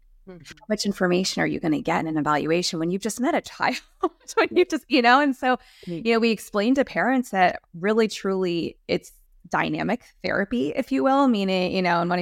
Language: English